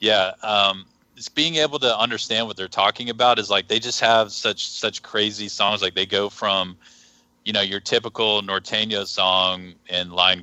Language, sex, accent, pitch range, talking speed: English, male, American, 90-110 Hz, 185 wpm